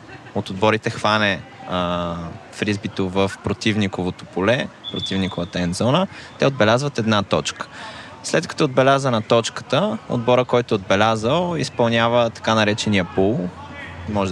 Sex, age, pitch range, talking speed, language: male, 20-39, 100-130 Hz, 115 wpm, Bulgarian